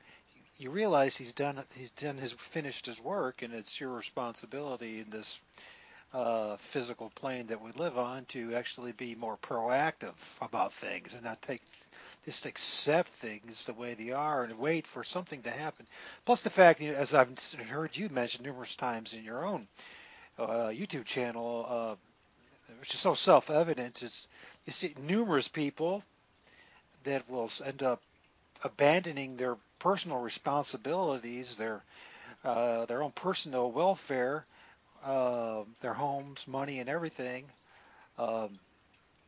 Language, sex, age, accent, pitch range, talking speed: English, male, 40-59, American, 120-150 Hz, 140 wpm